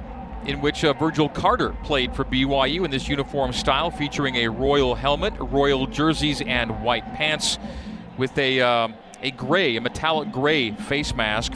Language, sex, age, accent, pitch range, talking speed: English, male, 40-59, American, 130-165 Hz, 160 wpm